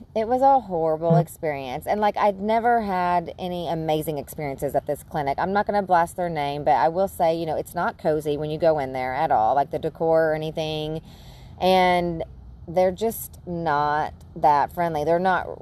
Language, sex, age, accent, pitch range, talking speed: English, female, 30-49, American, 155-195 Hz, 200 wpm